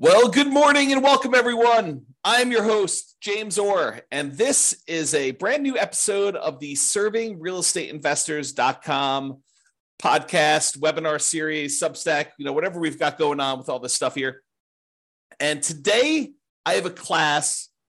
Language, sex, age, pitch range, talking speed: English, male, 40-59, 130-195 Hz, 145 wpm